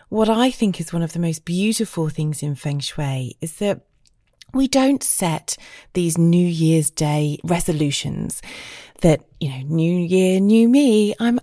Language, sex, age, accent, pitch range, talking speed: English, female, 30-49, British, 155-205 Hz, 165 wpm